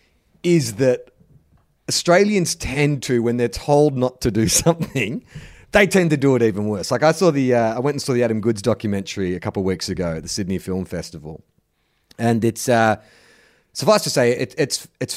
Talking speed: 200 wpm